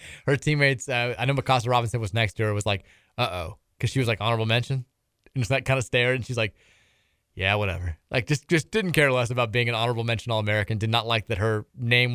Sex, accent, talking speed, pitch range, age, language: male, American, 240 wpm, 110-130 Hz, 20-39, English